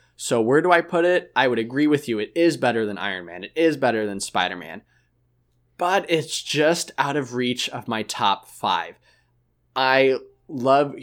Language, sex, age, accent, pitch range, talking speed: English, male, 20-39, American, 115-155 Hz, 185 wpm